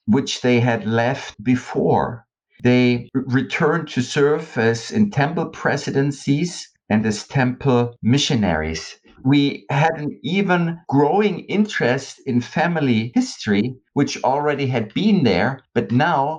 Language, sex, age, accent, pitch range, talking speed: English, male, 50-69, German, 120-150 Hz, 120 wpm